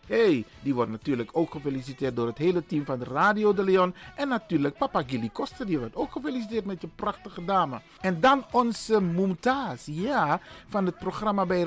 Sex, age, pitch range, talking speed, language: male, 50-69, 160-240 Hz, 185 wpm, Dutch